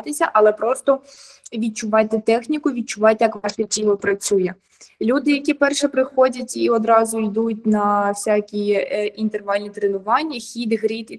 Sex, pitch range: female, 220-270 Hz